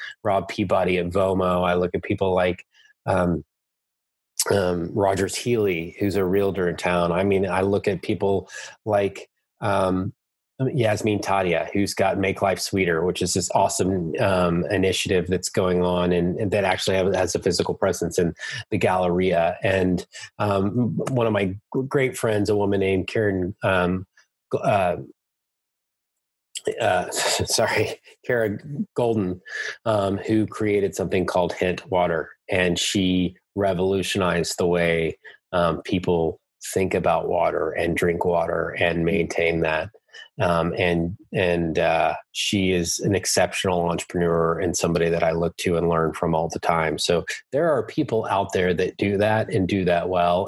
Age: 30-49